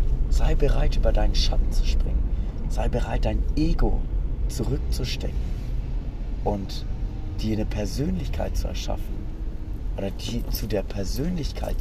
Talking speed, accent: 110 wpm, German